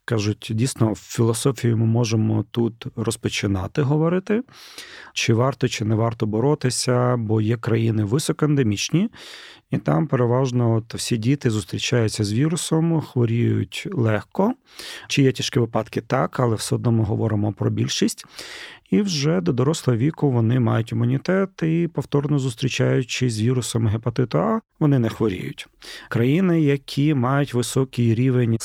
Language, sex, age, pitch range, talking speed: Ukrainian, male, 40-59, 110-140 Hz, 135 wpm